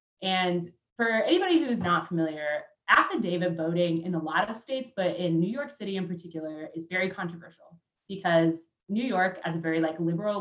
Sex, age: female, 20-39